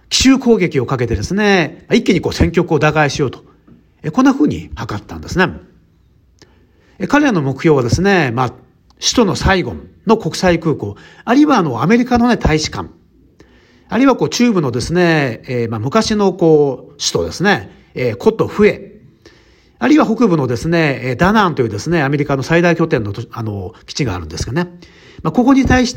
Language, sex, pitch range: Japanese, male, 130-205 Hz